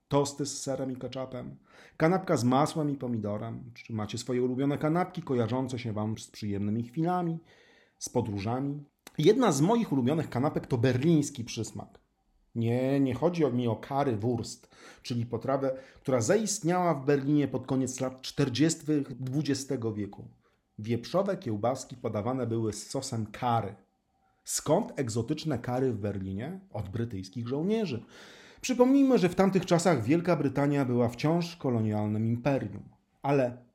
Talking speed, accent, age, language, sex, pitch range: 135 wpm, native, 40-59, Polish, male, 110-150 Hz